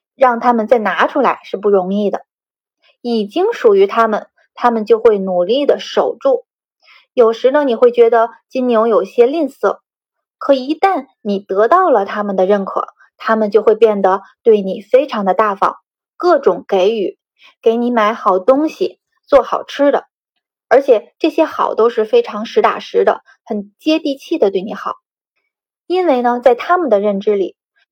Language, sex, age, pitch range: Chinese, female, 20-39, 215-320 Hz